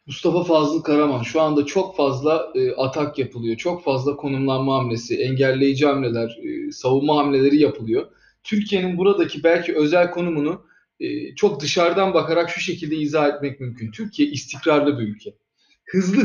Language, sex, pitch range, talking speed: Turkish, male, 145-215 Hz, 145 wpm